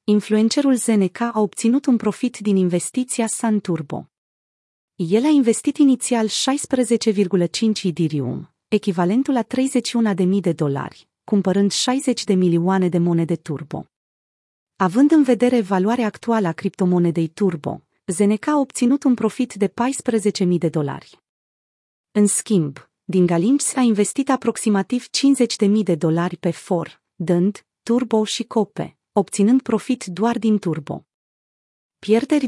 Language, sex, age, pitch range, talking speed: Romanian, female, 30-49, 180-235 Hz, 125 wpm